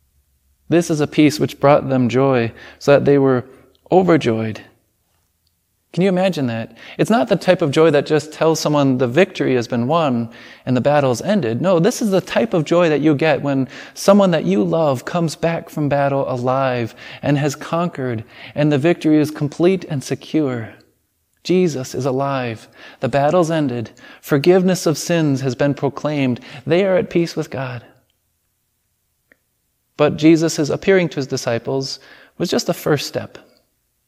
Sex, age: male, 20-39